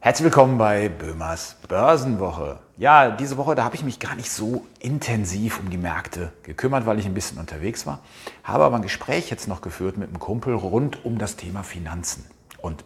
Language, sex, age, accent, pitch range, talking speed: German, male, 40-59, German, 90-120 Hz, 195 wpm